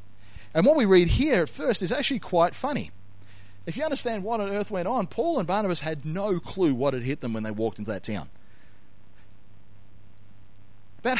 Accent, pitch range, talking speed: Australian, 110-180 Hz, 195 wpm